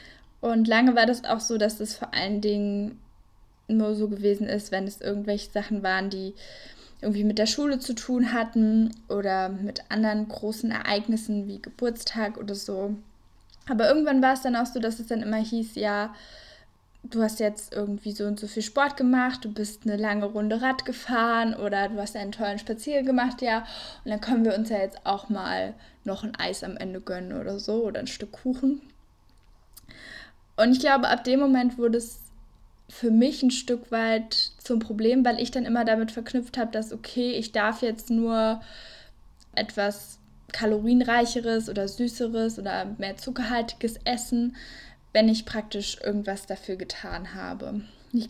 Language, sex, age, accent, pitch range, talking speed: German, female, 10-29, German, 210-240 Hz, 175 wpm